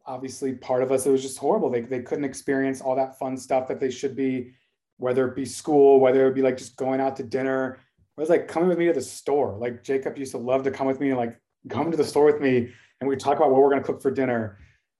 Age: 30-49